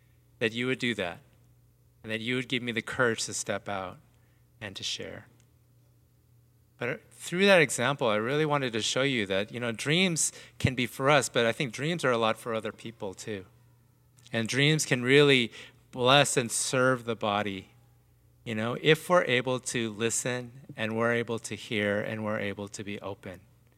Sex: male